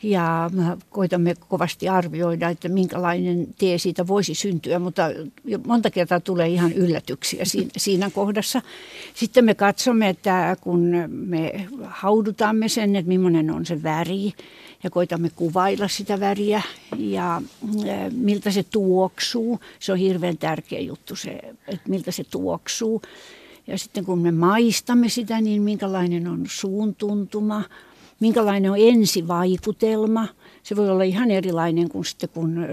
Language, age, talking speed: Finnish, 60-79, 130 wpm